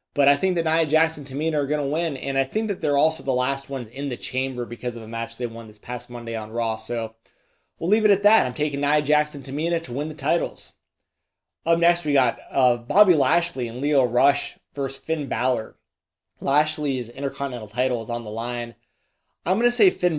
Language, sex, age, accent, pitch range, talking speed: English, male, 20-39, American, 115-145 Hz, 215 wpm